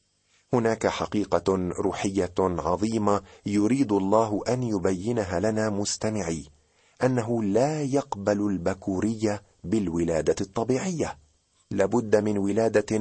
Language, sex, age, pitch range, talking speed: Arabic, male, 40-59, 90-120 Hz, 90 wpm